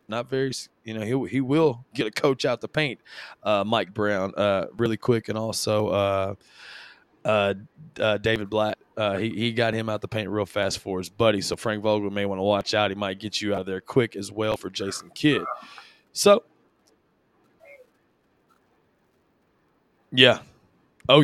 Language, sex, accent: English, male, American